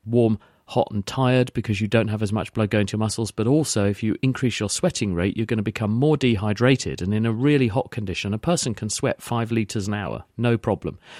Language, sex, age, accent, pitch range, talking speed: English, male, 40-59, British, 105-125 Hz, 240 wpm